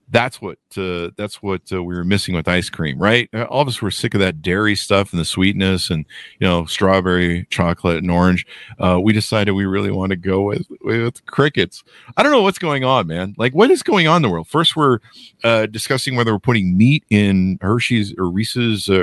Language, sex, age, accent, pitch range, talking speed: English, male, 50-69, American, 90-130 Hz, 220 wpm